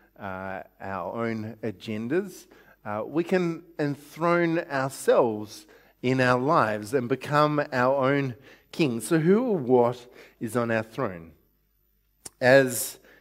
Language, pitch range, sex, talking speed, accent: English, 125-160 Hz, male, 120 wpm, Australian